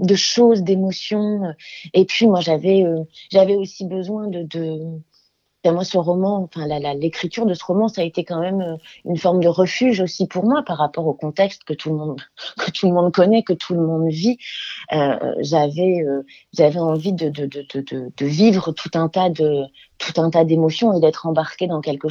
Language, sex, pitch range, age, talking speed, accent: French, female, 160-200 Hz, 30-49, 210 wpm, French